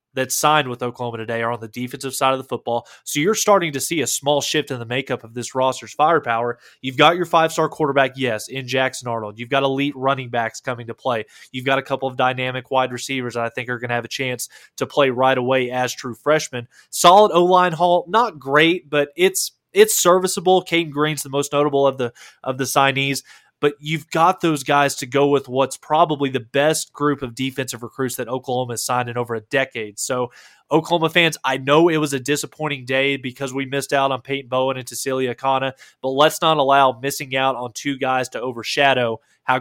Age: 20-39